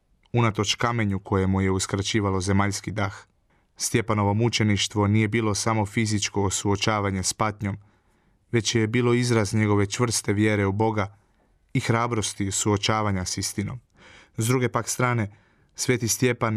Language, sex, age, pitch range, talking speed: Croatian, male, 30-49, 100-115 Hz, 130 wpm